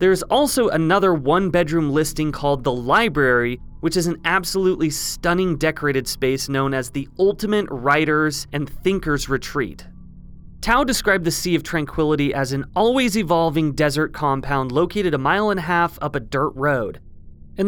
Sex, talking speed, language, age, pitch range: male, 160 wpm, English, 30-49, 140-185 Hz